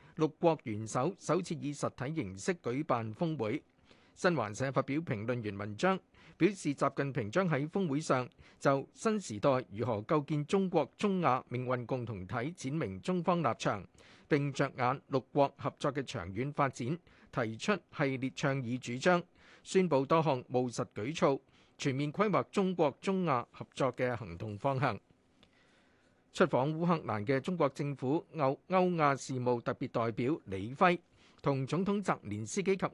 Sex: male